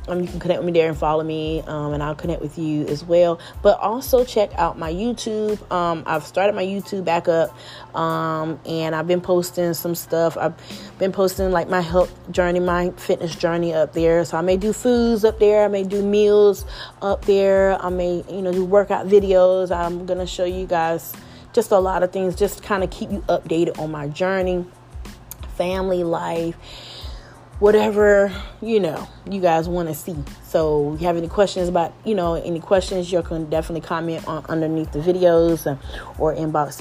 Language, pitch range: English, 160-190 Hz